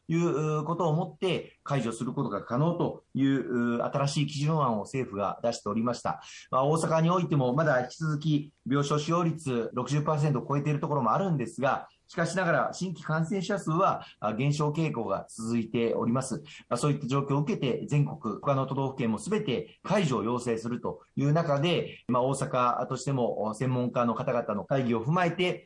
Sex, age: male, 30-49